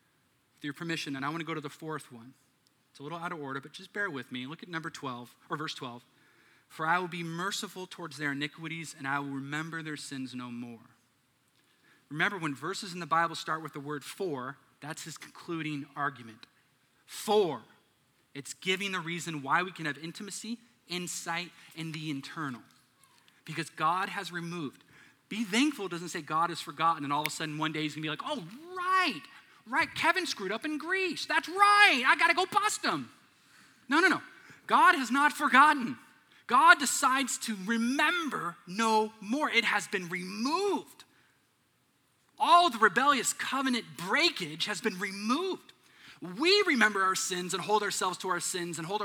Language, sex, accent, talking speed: English, male, American, 180 wpm